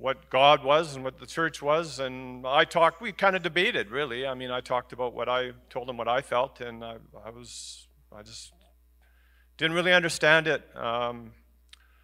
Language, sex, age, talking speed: English, male, 50-69, 195 wpm